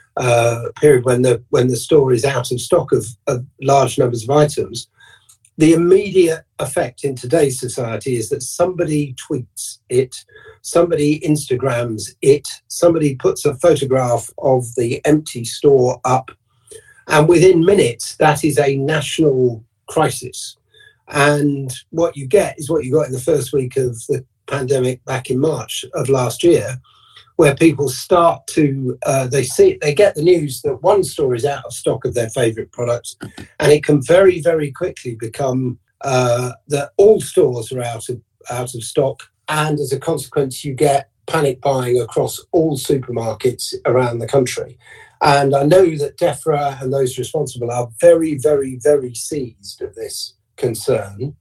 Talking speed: 160 wpm